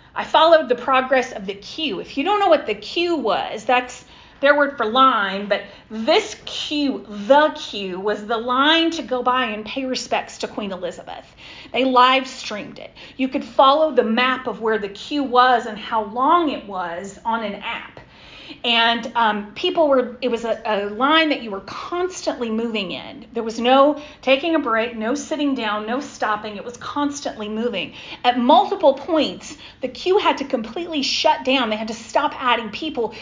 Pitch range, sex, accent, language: 225-285 Hz, female, American, English